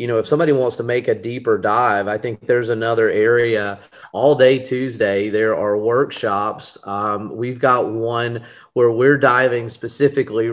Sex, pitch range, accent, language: male, 110-130 Hz, American, English